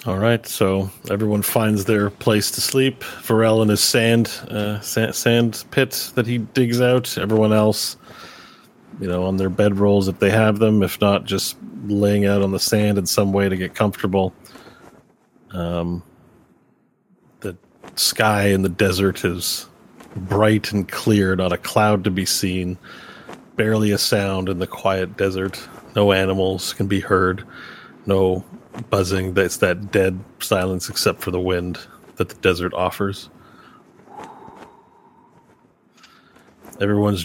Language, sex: English, male